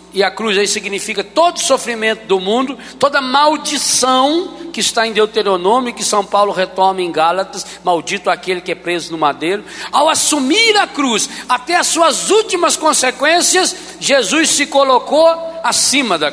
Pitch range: 190-315 Hz